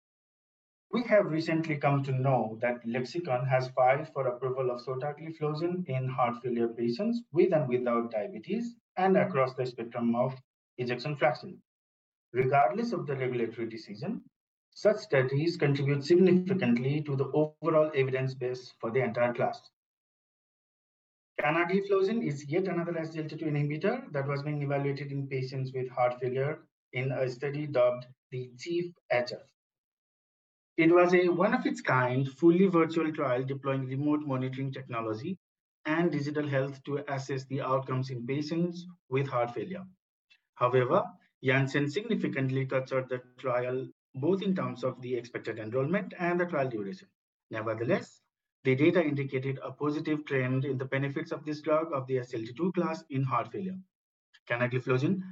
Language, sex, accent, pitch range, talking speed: English, male, Indian, 130-165 Hz, 140 wpm